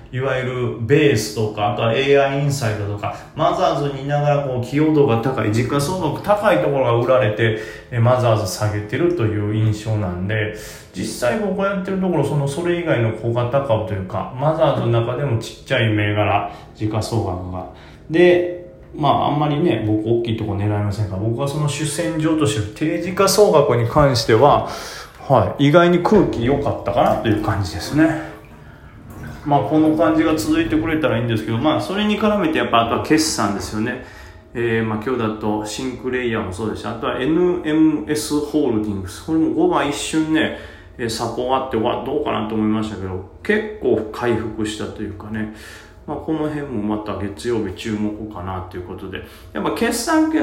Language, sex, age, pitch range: Japanese, male, 20-39, 105-145 Hz